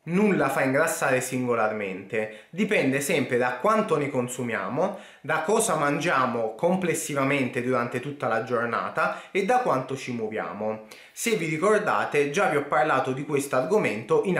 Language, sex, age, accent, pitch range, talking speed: Italian, male, 20-39, native, 125-195 Hz, 140 wpm